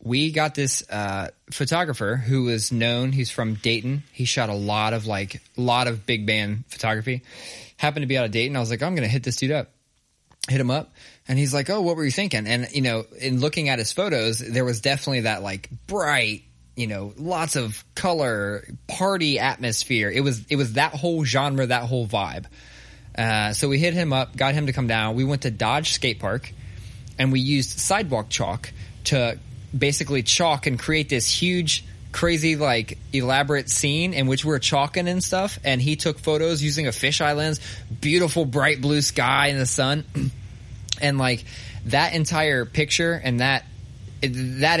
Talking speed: 195 wpm